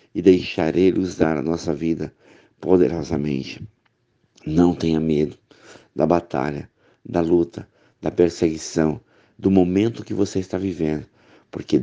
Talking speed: 115 wpm